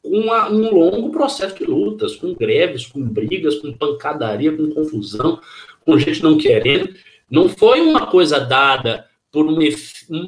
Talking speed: 145 wpm